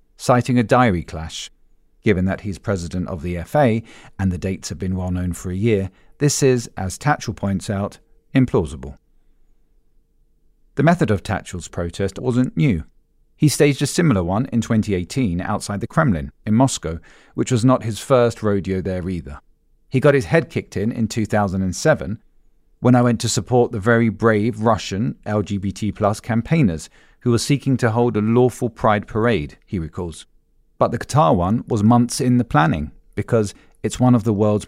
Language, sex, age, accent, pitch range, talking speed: English, male, 40-59, British, 95-120 Hz, 175 wpm